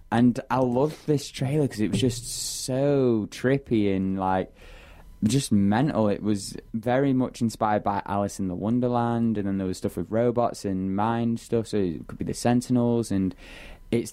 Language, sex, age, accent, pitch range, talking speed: English, male, 10-29, British, 95-115 Hz, 185 wpm